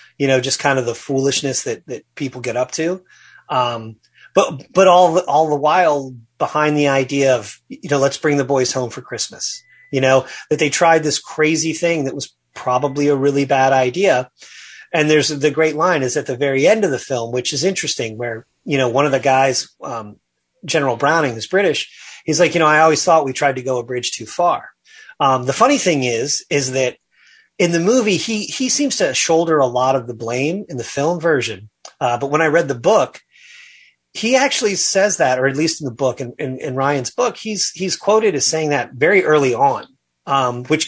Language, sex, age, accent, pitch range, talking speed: English, male, 30-49, American, 130-165 Hz, 220 wpm